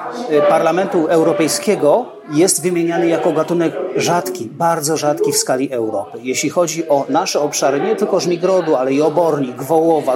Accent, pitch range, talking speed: native, 150-185 Hz, 140 wpm